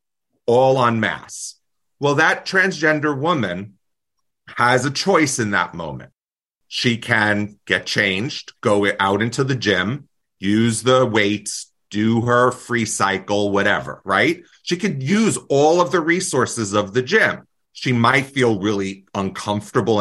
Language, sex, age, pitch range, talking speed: English, male, 30-49, 105-135 Hz, 140 wpm